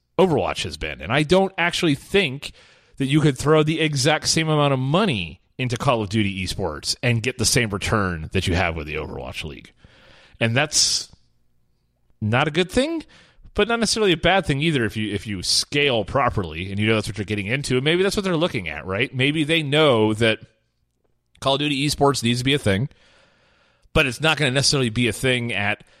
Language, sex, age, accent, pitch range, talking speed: English, male, 30-49, American, 100-145 Hz, 215 wpm